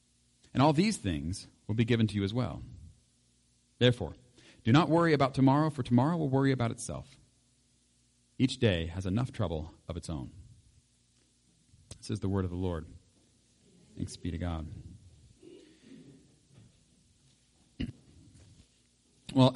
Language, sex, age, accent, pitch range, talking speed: English, male, 40-59, American, 95-125 Hz, 130 wpm